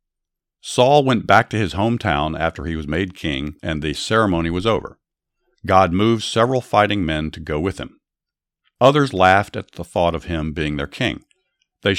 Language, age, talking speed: English, 50-69, 180 wpm